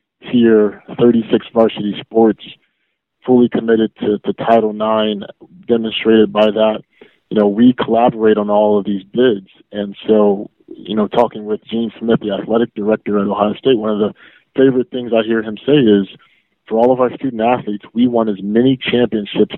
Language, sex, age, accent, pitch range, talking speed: English, male, 20-39, American, 105-120 Hz, 175 wpm